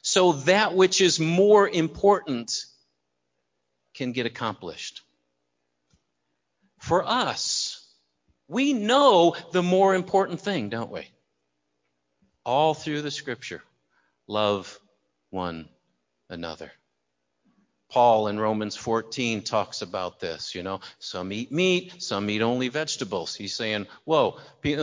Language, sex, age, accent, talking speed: English, male, 50-69, American, 110 wpm